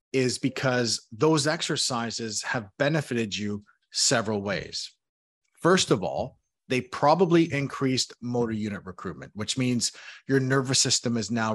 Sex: male